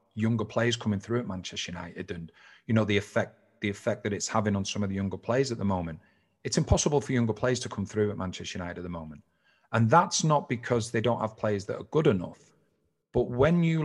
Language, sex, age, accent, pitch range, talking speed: English, male, 30-49, British, 100-125 Hz, 240 wpm